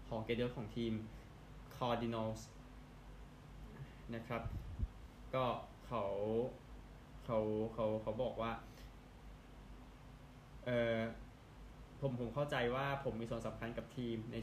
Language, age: Thai, 20-39